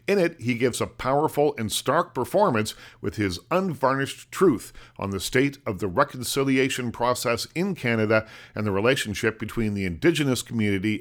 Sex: male